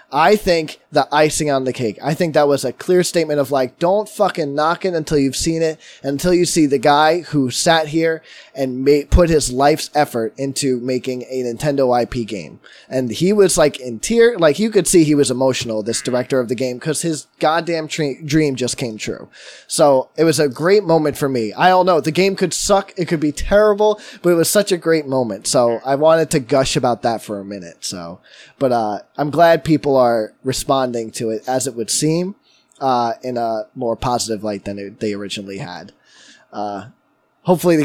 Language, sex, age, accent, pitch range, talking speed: English, male, 20-39, American, 130-170 Hz, 215 wpm